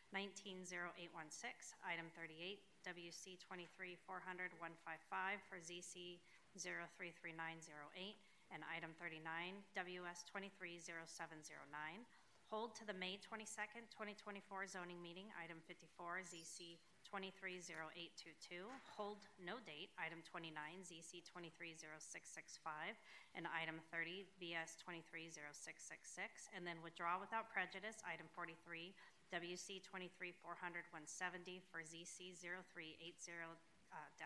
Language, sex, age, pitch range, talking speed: English, female, 30-49, 165-195 Hz, 95 wpm